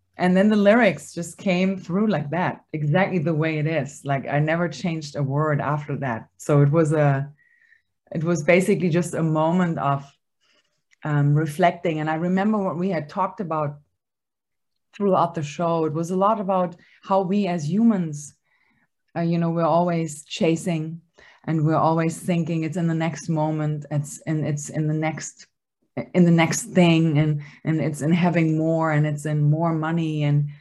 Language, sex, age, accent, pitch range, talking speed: English, female, 20-39, German, 155-190 Hz, 180 wpm